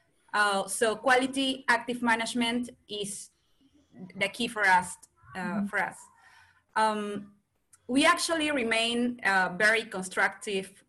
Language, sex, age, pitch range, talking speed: English, female, 20-39, 195-230 Hz, 110 wpm